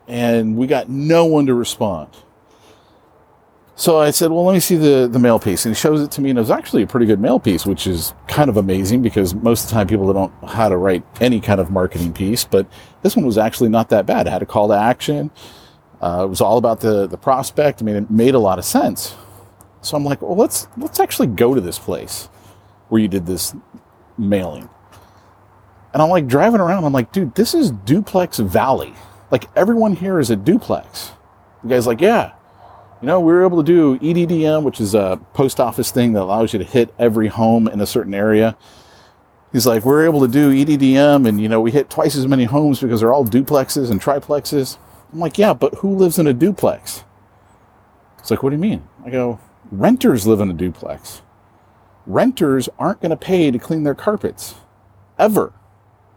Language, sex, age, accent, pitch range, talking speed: English, male, 40-59, American, 100-150 Hz, 215 wpm